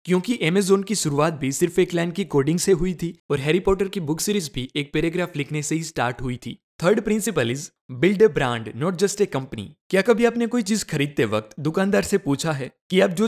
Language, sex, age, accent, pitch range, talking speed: Hindi, male, 20-39, native, 145-200 Hz, 235 wpm